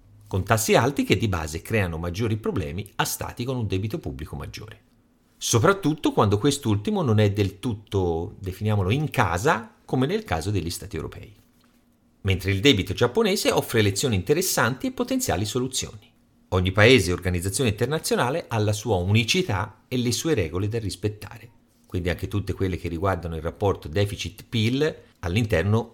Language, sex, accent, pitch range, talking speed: Italian, male, native, 95-120 Hz, 155 wpm